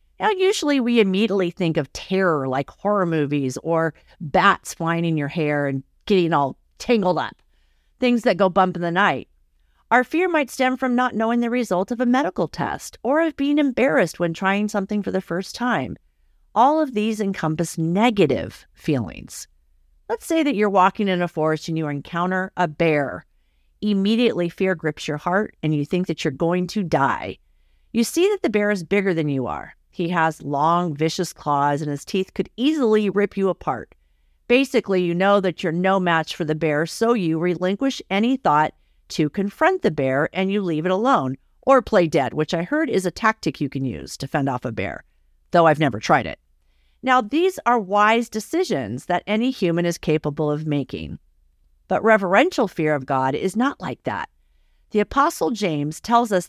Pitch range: 155-225 Hz